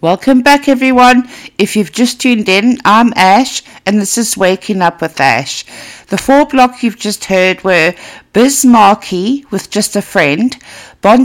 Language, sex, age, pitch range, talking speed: English, female, 60-79, 195-250 Hz, 165 wpm